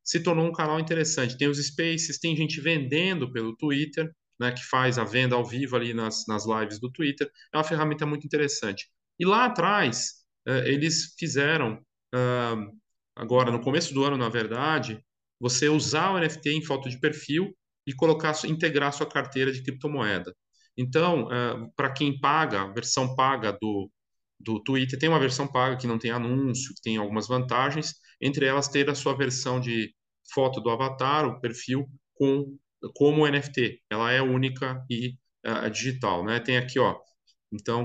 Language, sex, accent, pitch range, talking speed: Portuguese, male, Brazilian, 120-145 Hz, 170 wpm